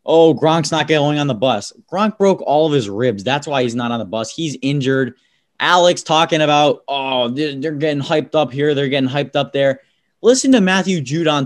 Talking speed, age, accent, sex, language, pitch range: 210 wpm, 20-39, American, male, English, 135-180 Hz